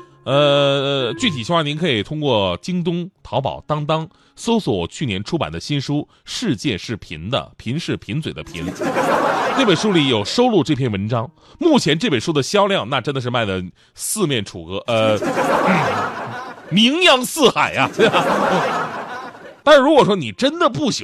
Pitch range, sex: 130-220 Hz, male